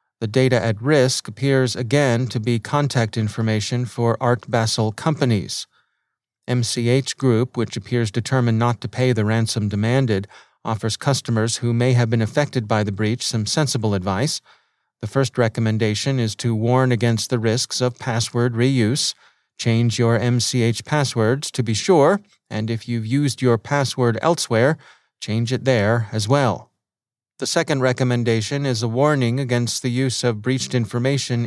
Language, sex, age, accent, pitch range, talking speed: English, male, 30-49, American, 115-140 Hz, 155 wpm